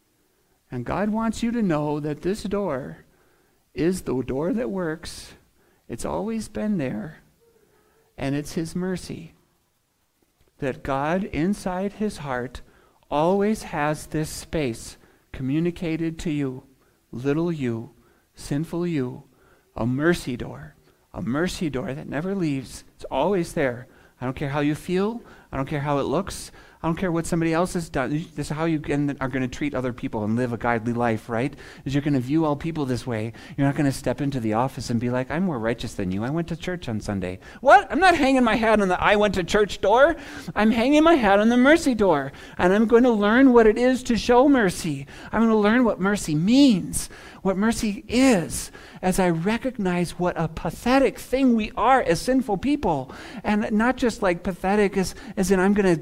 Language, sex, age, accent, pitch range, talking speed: English, male, 40-59, American, 140-210 Hz, 195 wpm